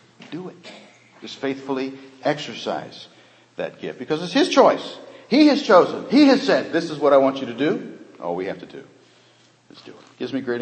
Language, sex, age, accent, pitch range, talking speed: English, male, 50-69, American, 100-145 Hz, 205 wpm